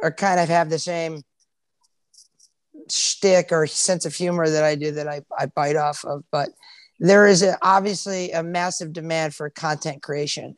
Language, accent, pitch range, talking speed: English, American, 165-215 Hz, 175 wpm